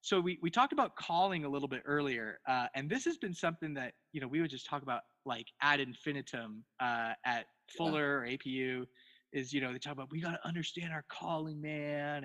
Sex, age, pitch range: male, 20-39, 130-155 Hz